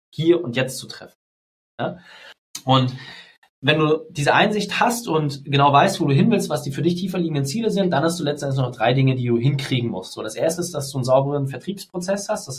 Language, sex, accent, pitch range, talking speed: German, male, German, 130-170 Hz, 235 wpm